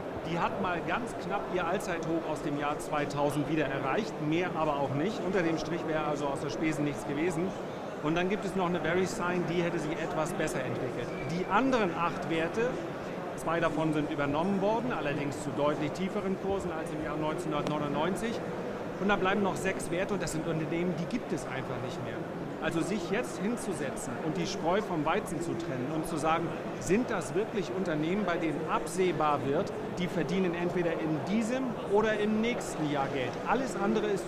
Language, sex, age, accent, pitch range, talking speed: German, male, 40-59, German, 155-195 Hz, 195 wpm